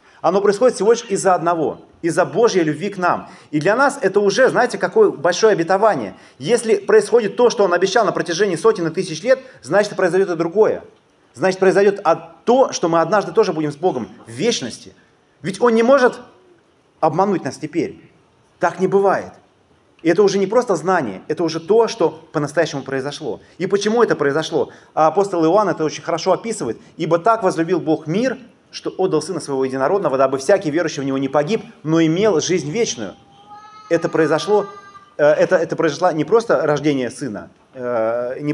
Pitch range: 150-200 Hz